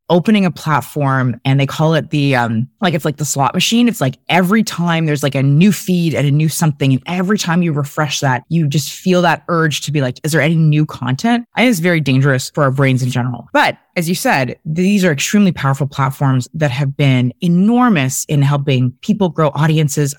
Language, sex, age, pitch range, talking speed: English, female, 20-39, 135-180 Hz, 225 wpm